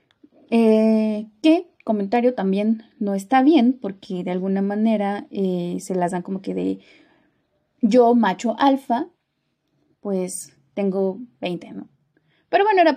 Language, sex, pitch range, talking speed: Spanish, female, 195-260 Hz, 130 wpm